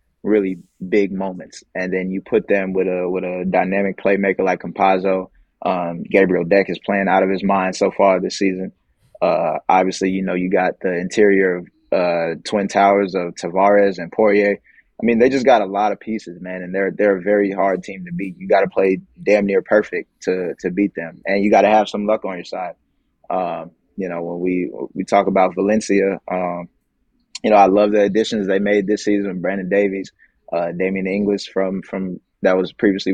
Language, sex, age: English, male, 20-39